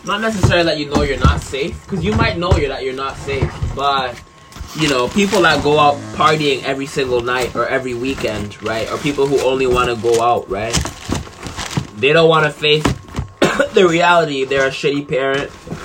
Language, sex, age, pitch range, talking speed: English, male, 20-39, 110-135 Hz, 195 wpm